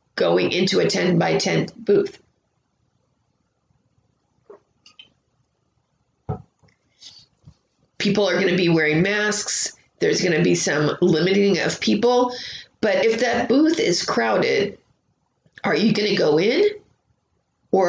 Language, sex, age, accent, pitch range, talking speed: English, female, 30-49, American, 175-220 Hz, 115 wpm